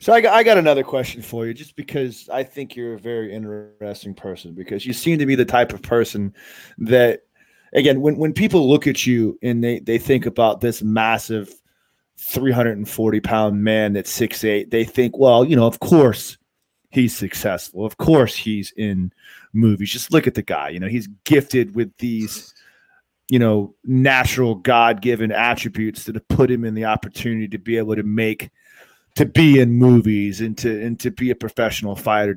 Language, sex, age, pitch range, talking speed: English, male, 30-49, 110-135 Hz, 185 wpm